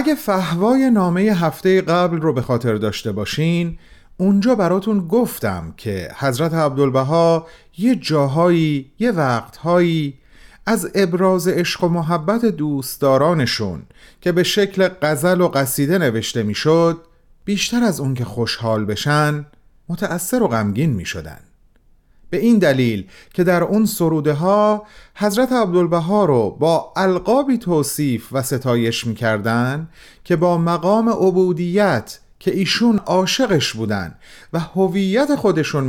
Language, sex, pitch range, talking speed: Persian, male, 120-185 Hz, 120 wpm